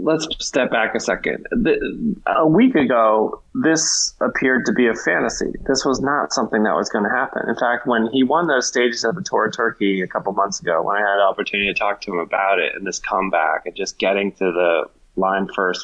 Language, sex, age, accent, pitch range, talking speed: English, male, 20-39, American, 100-135 Hz, 230 wpm